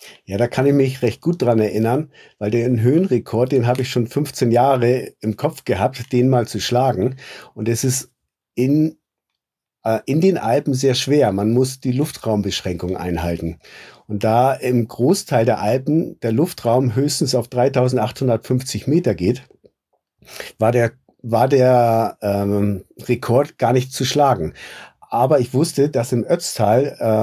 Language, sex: German, male